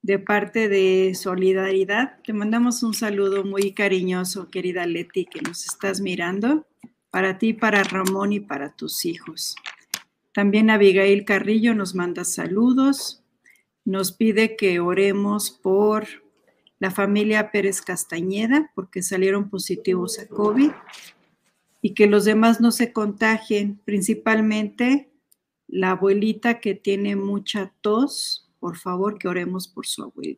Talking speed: 130 wpm